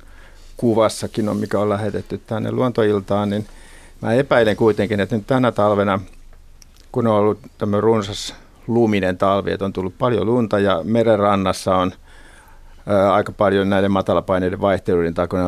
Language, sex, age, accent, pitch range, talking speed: Finnish, male, 50-69, native, 90-110 Hz, 145 wpm